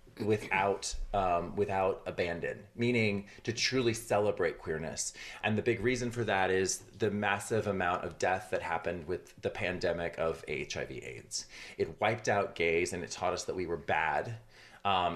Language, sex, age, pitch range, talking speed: English, male, 30-49, 100-115 Hz, 165 wpm